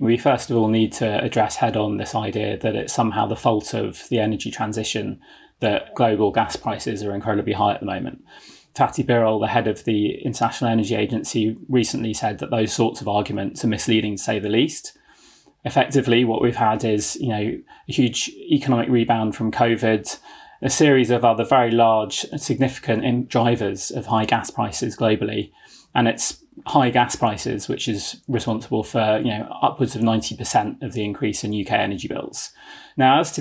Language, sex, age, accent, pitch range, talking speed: English, male, 30-49, British, 110-130 Hz, 185 wpm